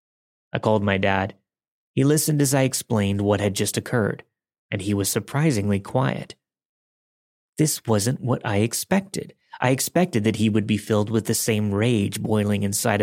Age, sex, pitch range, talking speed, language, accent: 30-49, male, 105-135 Hz, 165 wpm, English, American